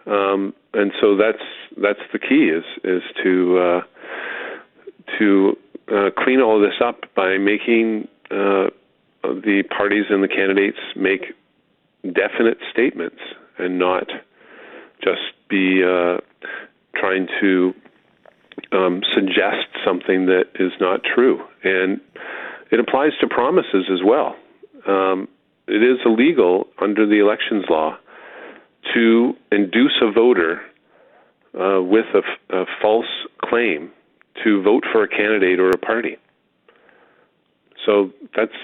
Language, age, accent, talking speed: English, 40-59, American, 120 wpm